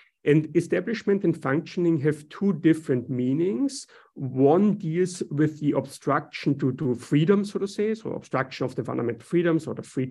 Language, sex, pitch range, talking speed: English, male, 130-160 Hz, 165 wpm